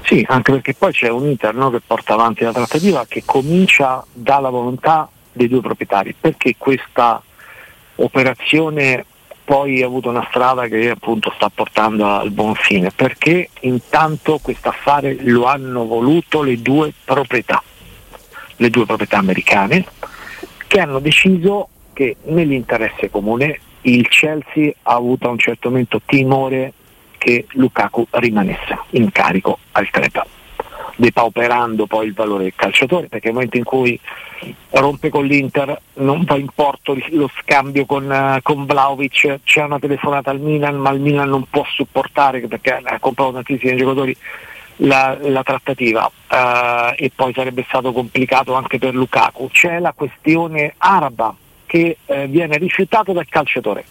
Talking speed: 140 wpm